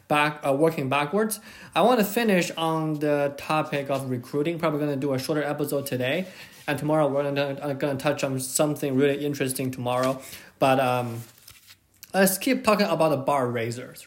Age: 20-39